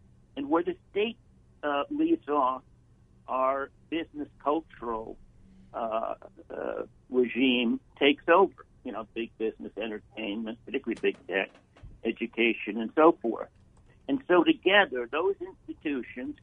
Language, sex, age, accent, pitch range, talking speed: English, male, 60-79, American, 120-160 Hz, 115 wpm